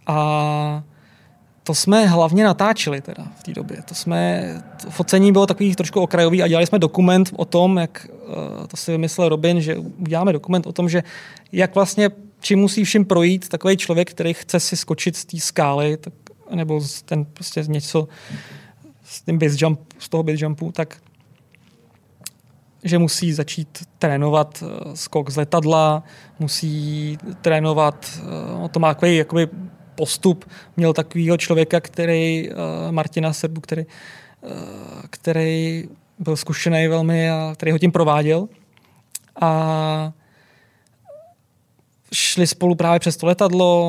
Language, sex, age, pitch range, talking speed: Czech, male, 20-39, 155-175 Hz, 135 wpm